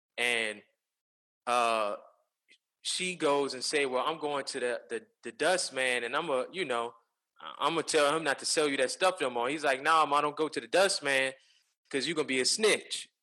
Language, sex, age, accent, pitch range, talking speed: English, male, 20-39, American, 125-155 Hz, 235 wpm